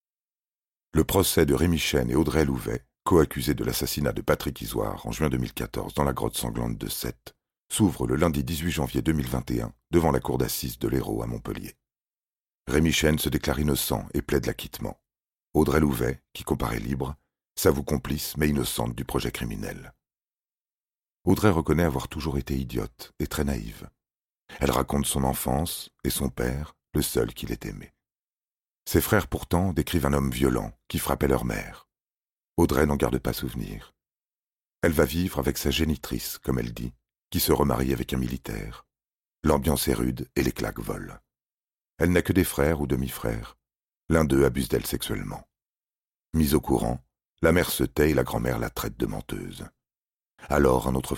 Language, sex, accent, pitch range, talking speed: French, male, French, 65-80 Hz, 170 wpm